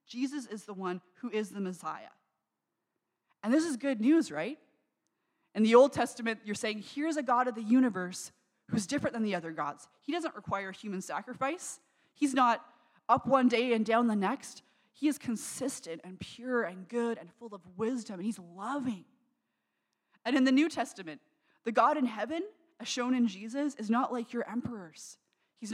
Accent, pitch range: American, 190-245 Hz